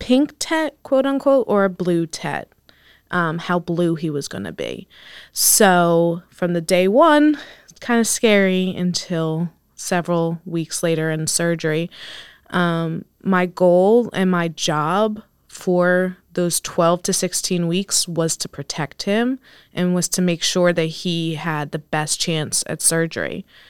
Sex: female